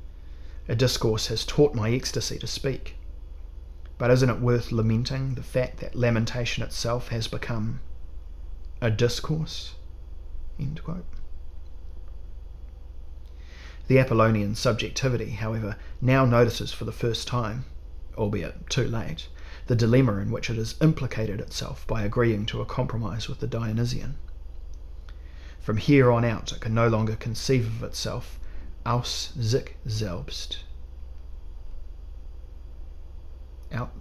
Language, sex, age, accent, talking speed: English, male, 30-49, Australian, 115 wpm